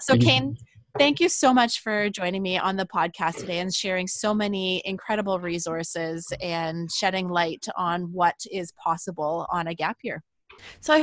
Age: 20-39